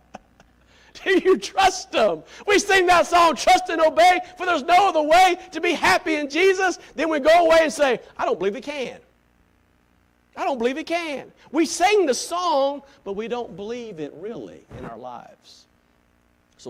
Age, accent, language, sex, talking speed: 50-69, American, English, male, 180 wpm